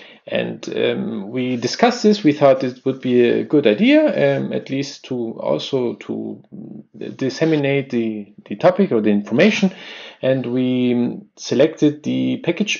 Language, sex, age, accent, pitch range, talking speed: English, male, 40-59, German, 120-160 Hz, 145 wpm